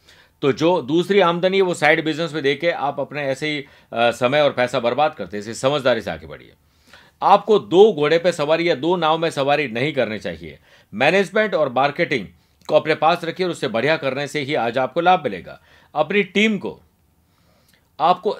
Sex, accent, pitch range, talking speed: male, native, 140-180 Hz, 190 wpm